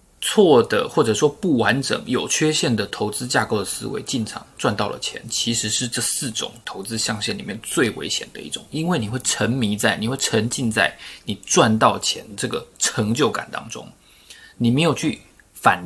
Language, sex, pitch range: Chinese, male, 110-135 Hz